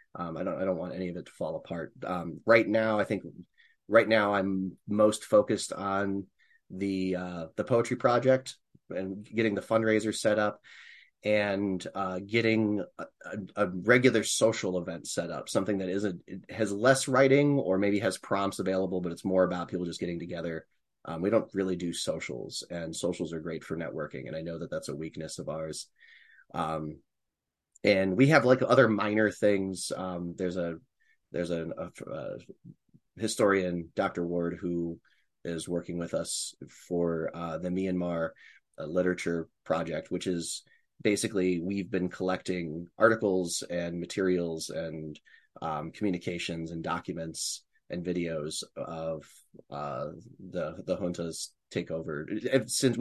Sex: male